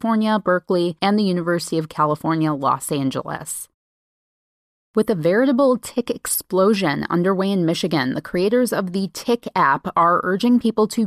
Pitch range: 165-220 Hz